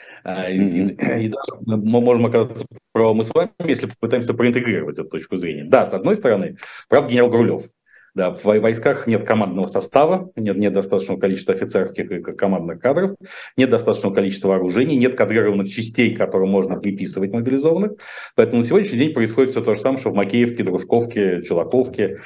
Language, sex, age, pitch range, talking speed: Russian, male, 40-59, 100-125 Hz, 165 wpm